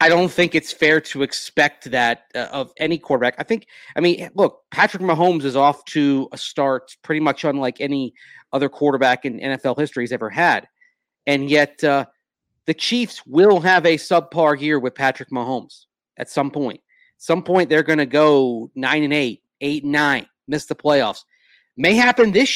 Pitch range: 130-165 Hz